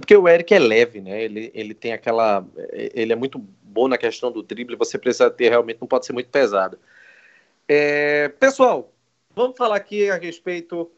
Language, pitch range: Portuguese, 135-220 Hz